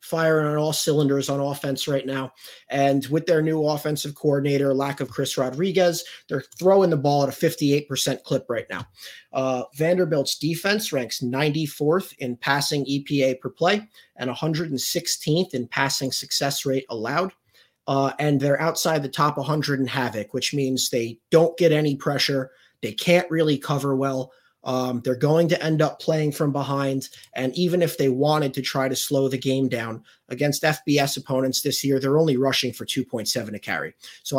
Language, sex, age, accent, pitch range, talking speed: English, male, 30-49, American, 130-155 Hz, 175 wpm